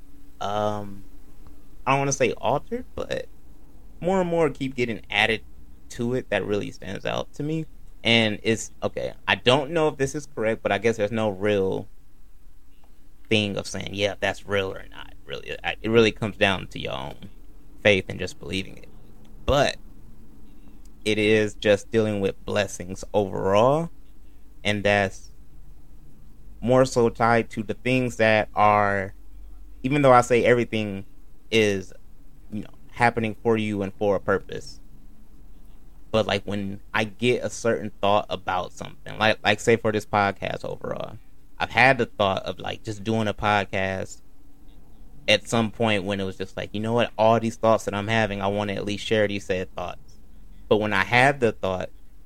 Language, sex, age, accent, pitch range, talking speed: English, male, 30-49, American, 100-115 Hz, 170 wpm